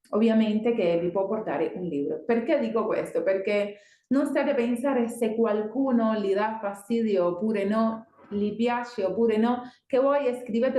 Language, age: Italian, 30-49